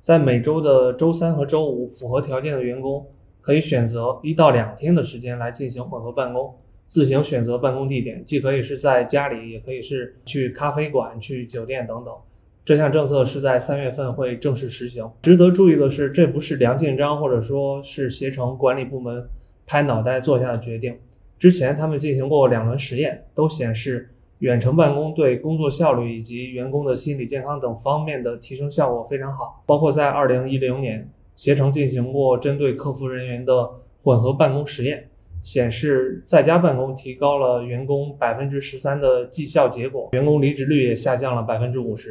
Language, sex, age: Chinese, male, 20-39